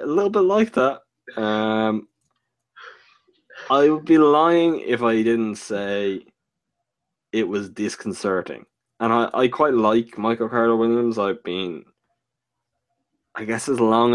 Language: English